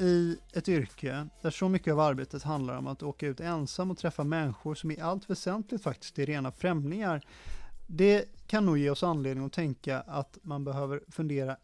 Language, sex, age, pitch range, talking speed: Swedish, male, 30-49, 140-180 Hz, 190 wpm